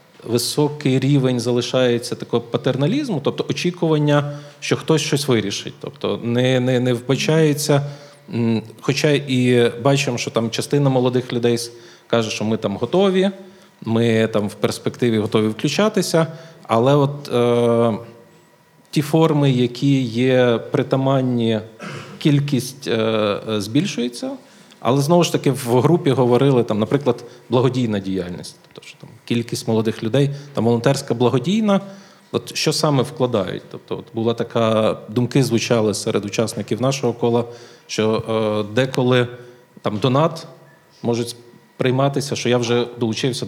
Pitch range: 115-145 Hz